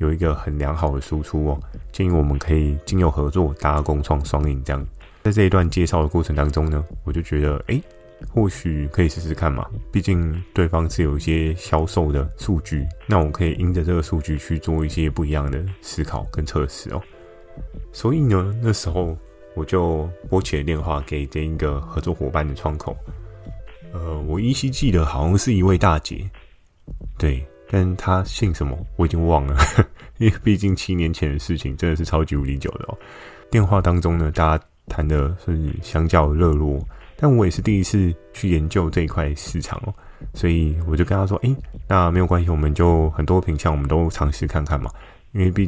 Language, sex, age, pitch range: Chinese, male, 20-39, 75-95 Hz